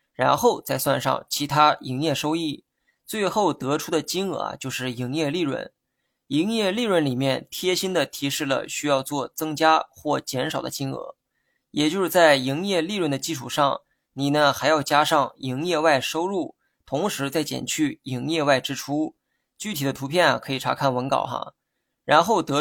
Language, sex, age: Chinese, male, 20-39